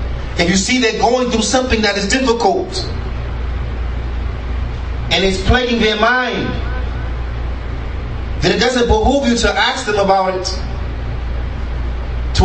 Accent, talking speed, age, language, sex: American, 125 wpm, 30-49, English, male